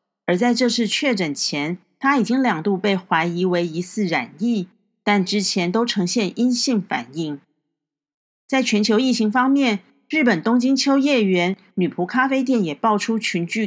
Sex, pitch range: female, 195-250 Hz